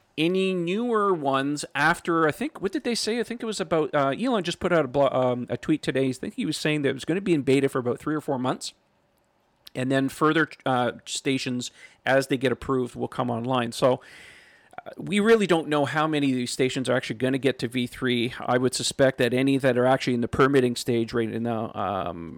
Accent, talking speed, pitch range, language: American, 240 wpm, 125-155 Hz, English